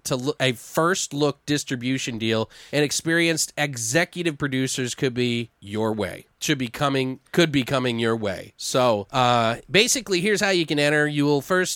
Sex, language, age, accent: male, English, 30-49, American